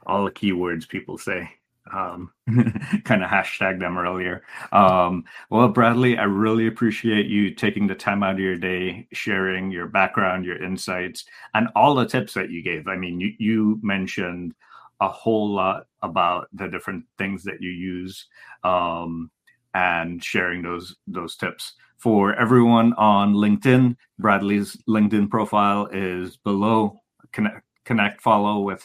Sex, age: male, 30-49